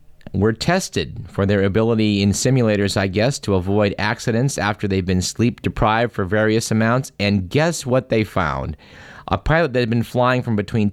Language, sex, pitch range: English, male, 95-125 Hz